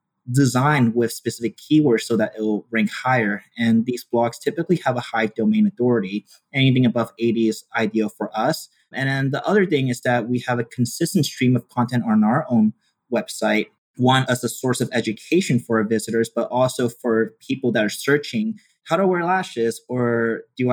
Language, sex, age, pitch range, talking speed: English, male, 30-49, 115-145 Hz, 190 wpm